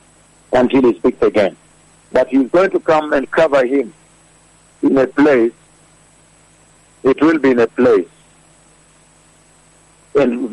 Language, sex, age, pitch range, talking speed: English, male, 60-79, 120-175 Hz, 125 wpm